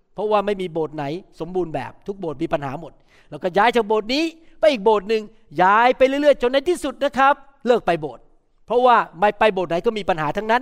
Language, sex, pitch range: Thai, male, 180-240 Hz